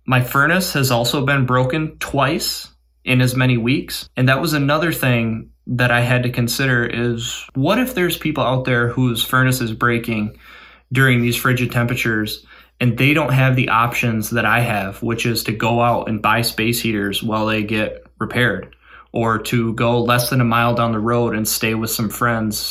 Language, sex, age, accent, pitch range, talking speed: English, male, 20-39, American, 115-135 Hz, 195 wpm